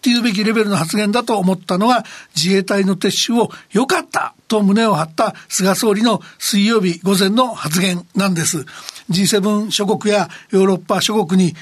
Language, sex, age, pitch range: Japanese, male, 60-79, 190-230 Hz